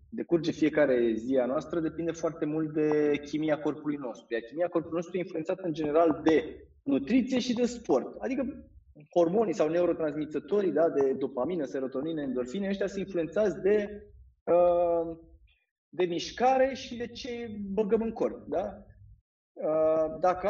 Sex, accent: male, native